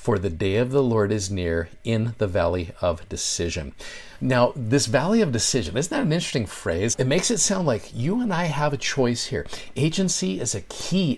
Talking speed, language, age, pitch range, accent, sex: 210 wpm, English, 50-69, 95-140 Hz, American, male